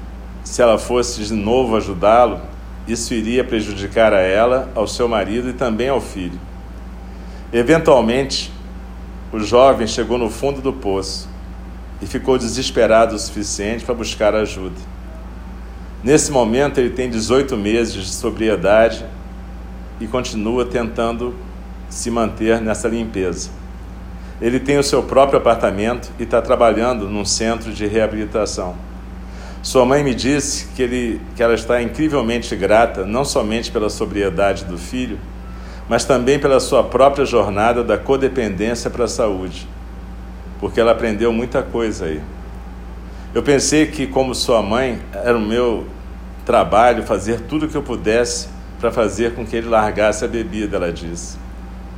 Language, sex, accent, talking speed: Portuguese, male, Brazilian, 140 wpm